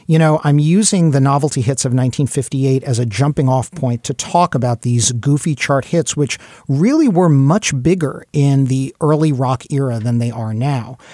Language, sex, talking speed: English, male, 190 wpm